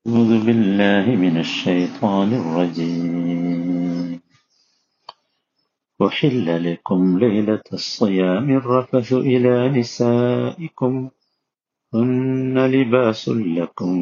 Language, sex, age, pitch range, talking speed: Malayalam, male, 50-69, 100-135 Hz, 65 wpm